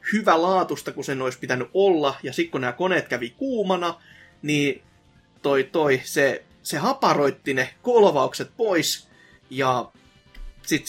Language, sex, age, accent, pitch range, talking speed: Finnish, male, 30-49, native, 135-185 Hz, 140 wpm